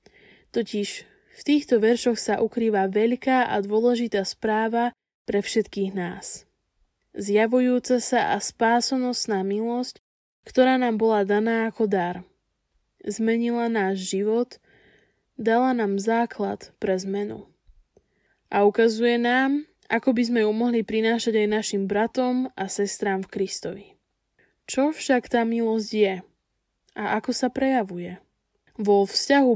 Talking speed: 120 wpm